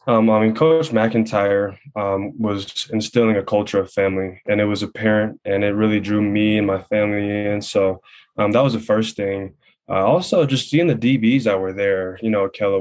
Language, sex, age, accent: English, male, 10-29, American